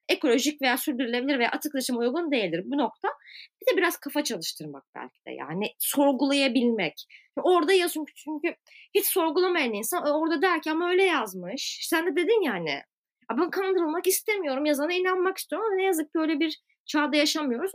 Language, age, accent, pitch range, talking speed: Turkish, 30-49, native, 235-335 Hz, 160 wpm